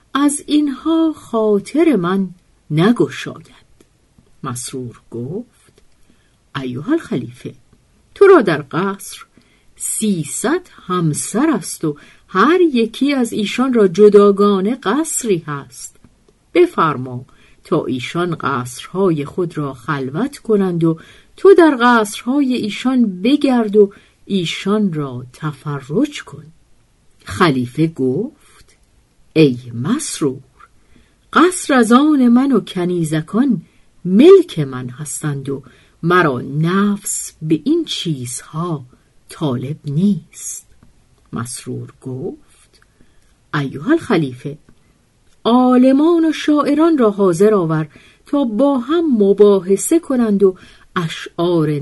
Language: Persian